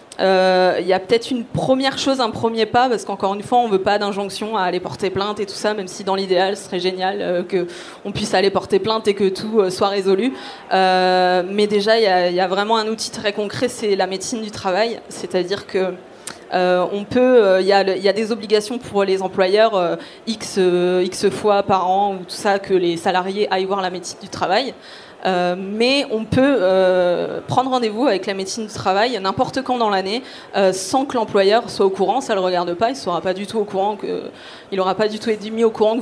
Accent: French